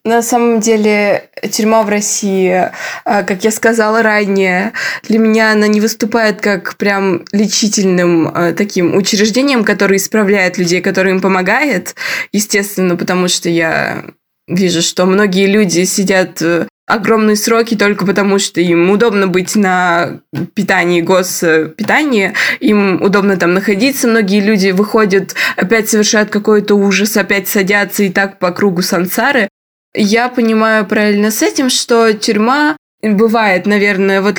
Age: 20-39